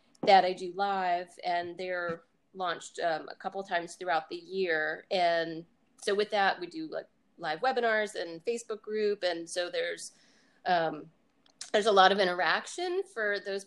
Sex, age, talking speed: female, 30-49, 160 wpm